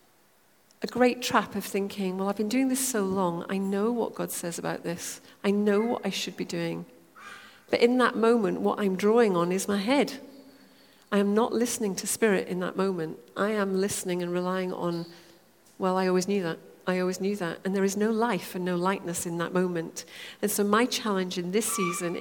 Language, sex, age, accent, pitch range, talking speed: English, female, 40-59, British, 175-230 Hz, 215 wpm